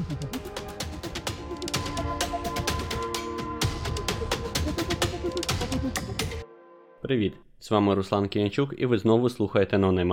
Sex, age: male, 20-39